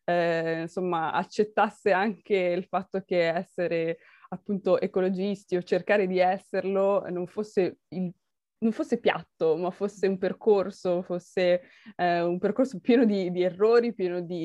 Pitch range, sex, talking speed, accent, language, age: 185-230 Hz, female, 140 wpm, native, Italian, 20-39